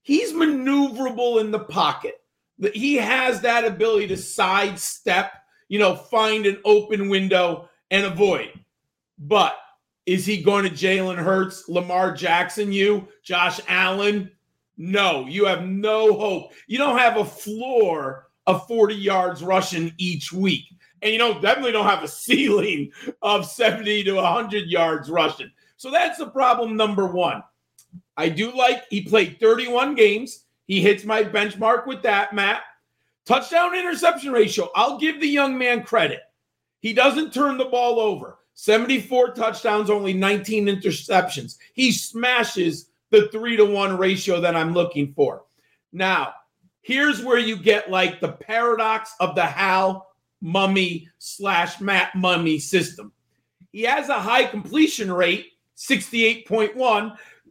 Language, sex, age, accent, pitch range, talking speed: English, male, 40-59, American, 185-235 Hz, 140 wpm